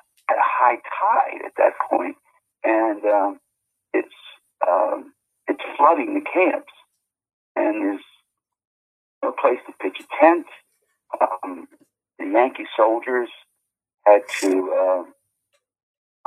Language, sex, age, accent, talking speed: English, male, 50-69, American, 105 wpm